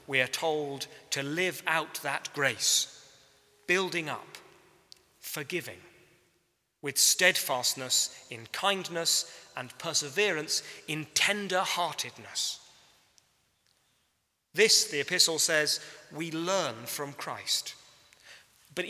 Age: 40-59